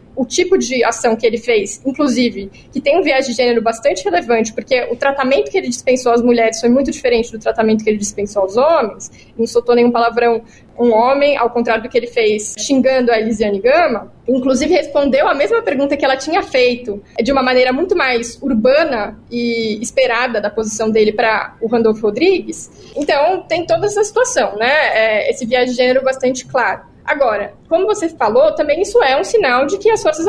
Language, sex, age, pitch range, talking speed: Portuguese, female, 20-39, 230-300 Hz, 200 wpm